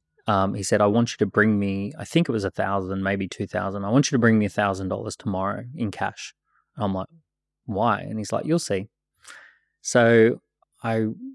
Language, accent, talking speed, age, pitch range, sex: English, Australian, 215 wpm, 20-39, 100-115 Hz, male